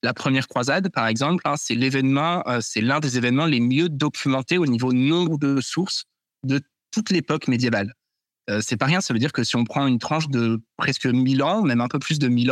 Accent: French